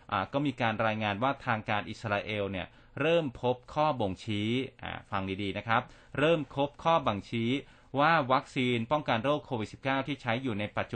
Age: 30-49